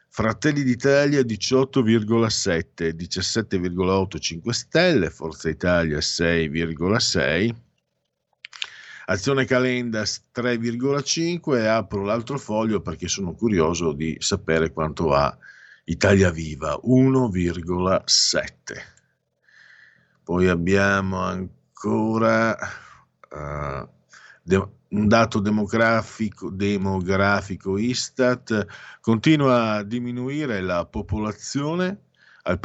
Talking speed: 75 wpm